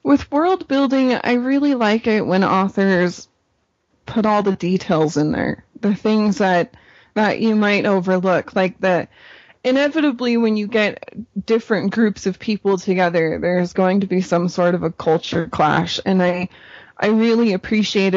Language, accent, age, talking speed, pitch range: English, American, 20-39, 160 wpm, 180-215 Hz